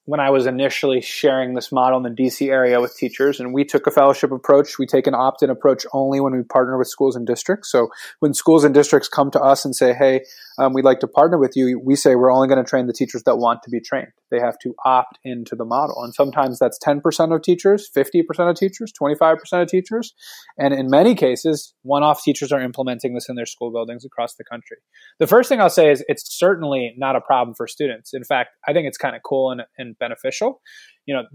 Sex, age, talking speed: male, 20-39, 235 wpm